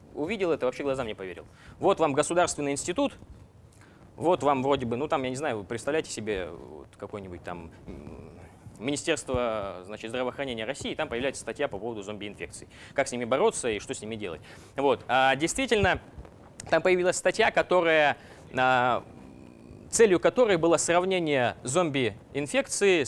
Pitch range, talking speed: 125-165 Hz, 150 wpm